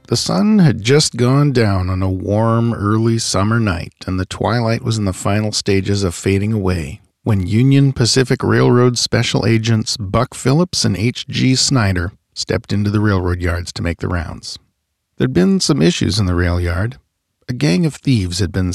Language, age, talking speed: English, 40-59, 180 wpm